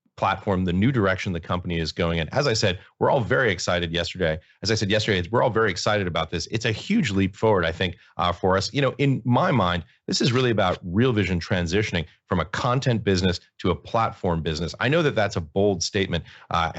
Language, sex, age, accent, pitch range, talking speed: English, male, 30-49, American, 90-110 Hz, 230 wpm